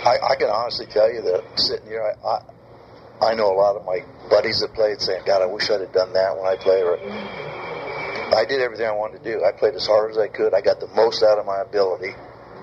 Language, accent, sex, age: English, American, male, 60-79